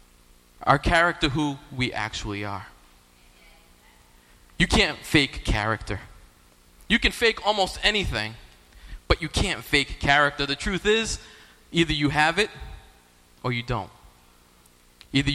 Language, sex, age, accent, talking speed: English, male, 20-39, American, 120 wpm